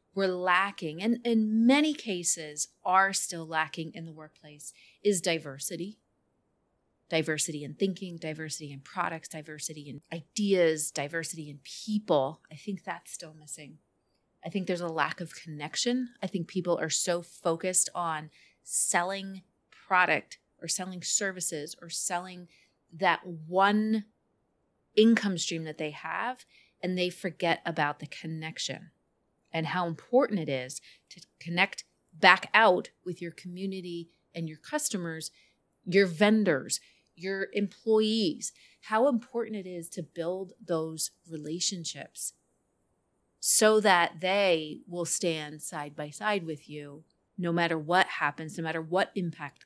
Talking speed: 135 wpm